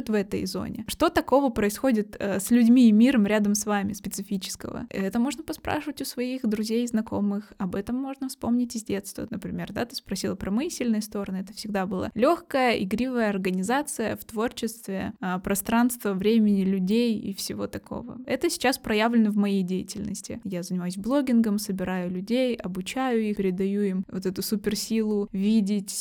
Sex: female